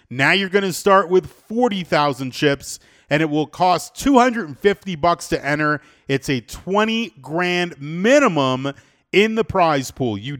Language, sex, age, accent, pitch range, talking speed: English, male, 40-59, American, 130-200 Hz, 175 wpm